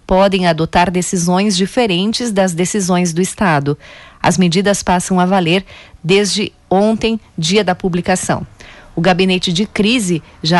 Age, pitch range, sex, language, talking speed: 40-59, 180-210 Hz, female, Portuguese, 130 wpm